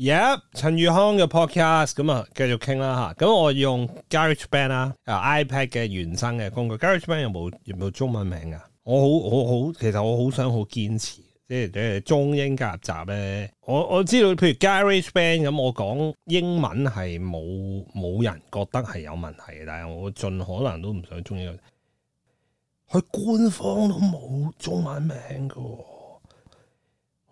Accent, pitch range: native, 100-145 Hz